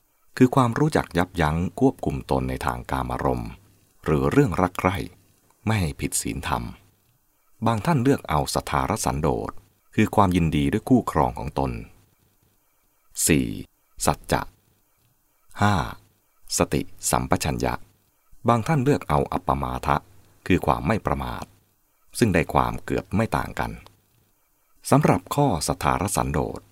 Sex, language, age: male, English, 30-49